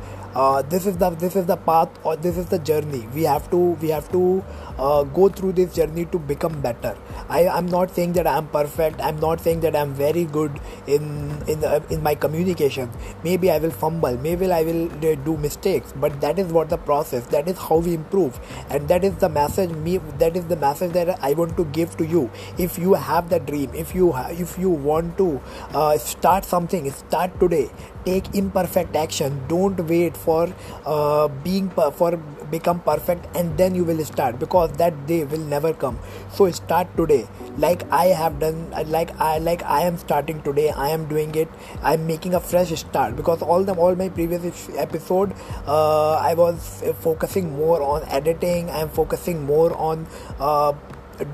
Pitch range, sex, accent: 150-180 Hz, male, Indian